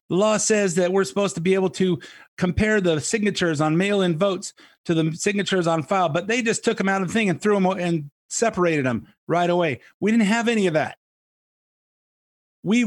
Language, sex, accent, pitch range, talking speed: English, male, American, 155-210 Hz, 215 wpm